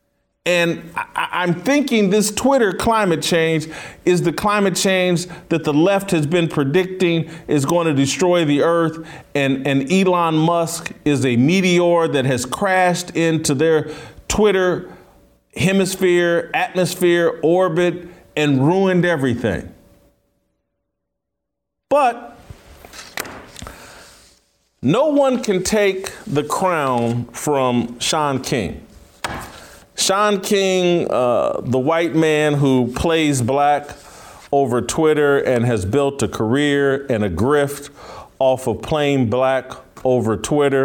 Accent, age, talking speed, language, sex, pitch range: American, 40-59, 115 wpm, English, male, 120-170 Hz